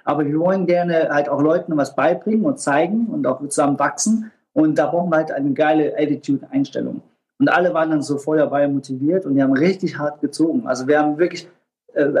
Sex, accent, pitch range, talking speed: male, German, 150-180 Hz, 200 wpm